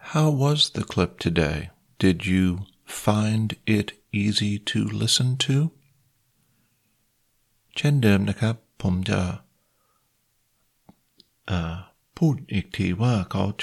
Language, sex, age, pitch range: Thai, male, 50-69, 95-115 Hz